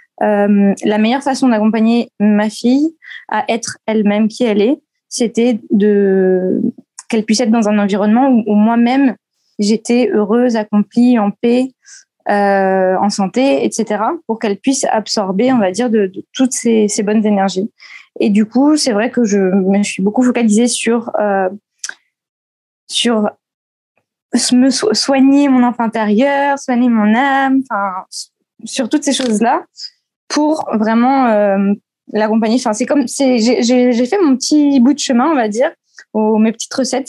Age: 20-39